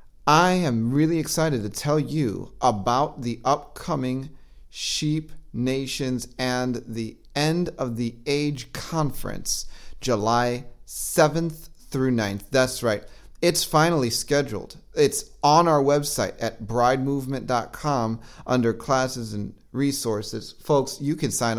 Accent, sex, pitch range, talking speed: American, male, 120-145 Hz, 115 wpm